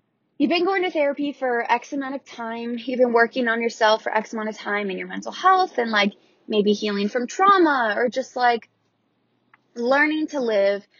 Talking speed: 195 wpm